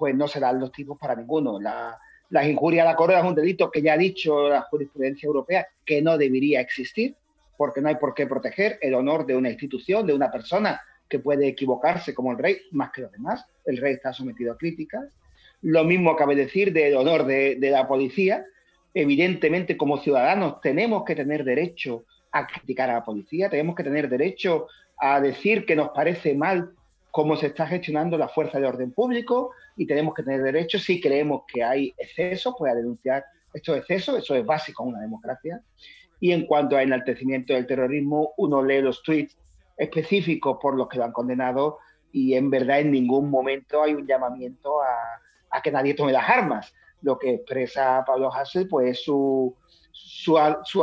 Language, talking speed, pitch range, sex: Spanish, 190 wpm, 135-175 Hz, male